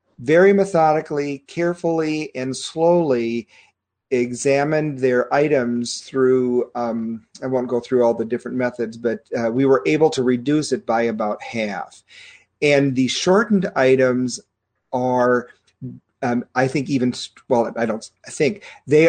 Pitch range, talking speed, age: 120-145 Hz, 135 wpm, 40-59